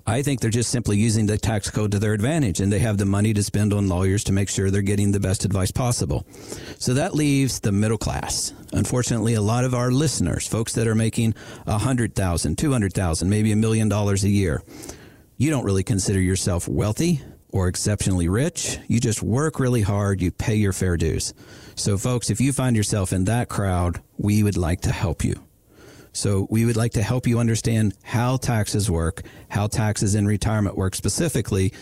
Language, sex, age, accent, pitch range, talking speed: English, male, 50-69, American, 100-120 Hz, 205 wpm